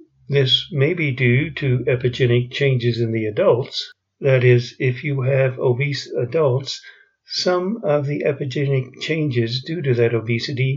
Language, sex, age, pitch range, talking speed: English, male, 60-79, 125-150 Hz, 145 wpm